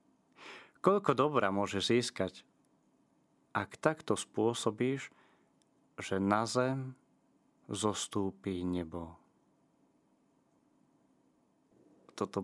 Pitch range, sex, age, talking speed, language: 100-125 Hz, male, 30-49, 65 wpm, Slovak